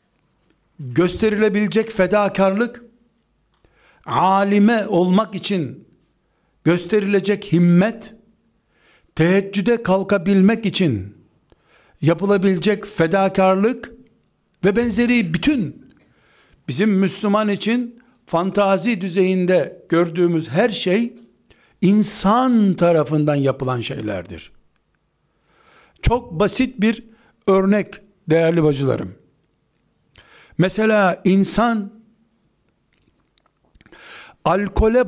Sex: male